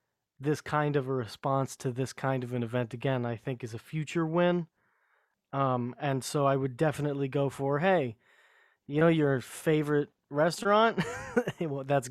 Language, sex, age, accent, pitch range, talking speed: English, male, 30-49, American, 130-155 Hz, 165 wpm